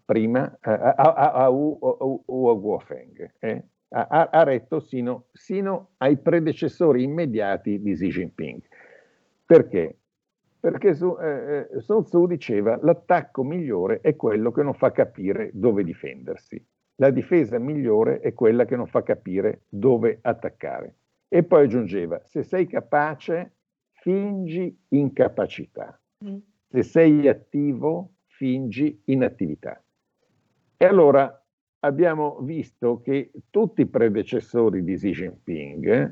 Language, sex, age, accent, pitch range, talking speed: Italian, male, 60-79, native, 120-175 Hz, 115 wpm